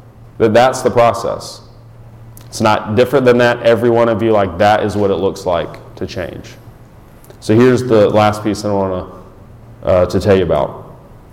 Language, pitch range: English, 105-120 Hz